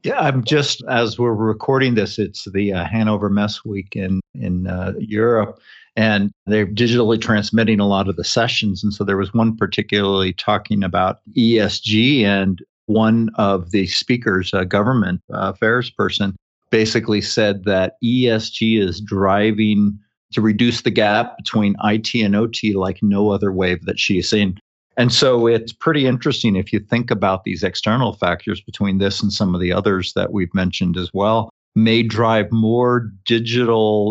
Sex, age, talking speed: male, 50-69, 165 wpm